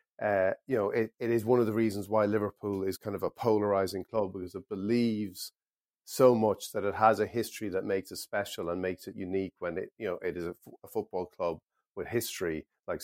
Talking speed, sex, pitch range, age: 230 wpm, male, 95-115 Hz, 50-69